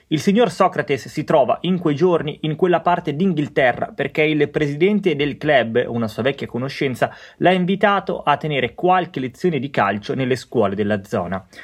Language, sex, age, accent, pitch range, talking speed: Italian, male, 30-49, native, 125-175 Hz, 170 wpm